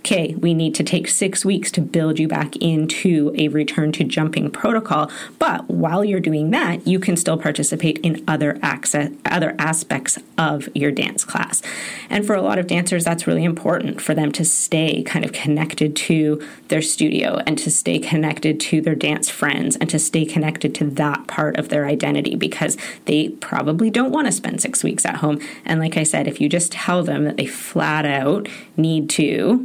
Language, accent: English, American